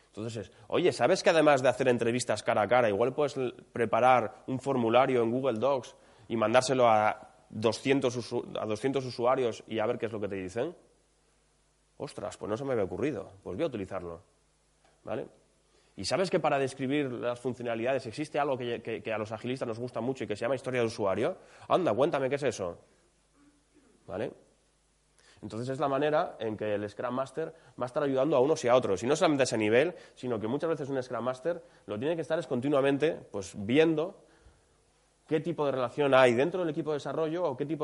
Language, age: English, 20-39